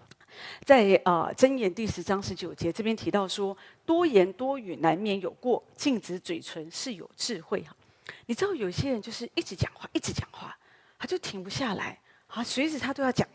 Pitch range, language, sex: 190-300 Hz, Chinese, female